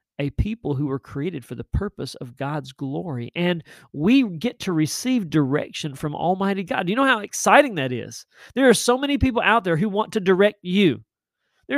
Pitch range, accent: 130-215 Hz, American